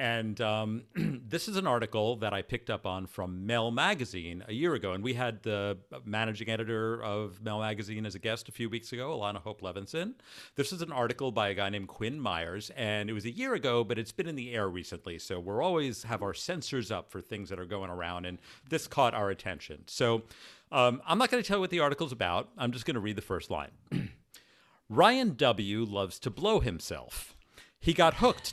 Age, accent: 50-69, American